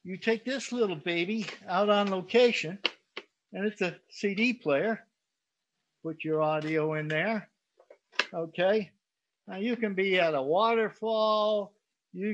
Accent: American